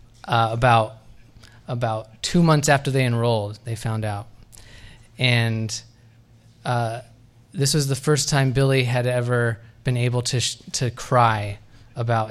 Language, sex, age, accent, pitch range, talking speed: English, male, 20-39, American, 115-130 Hz, 135 wpm